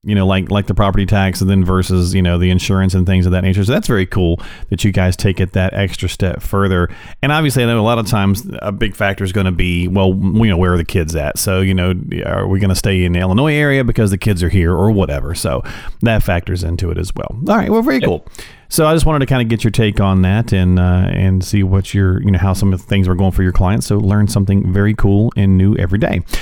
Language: English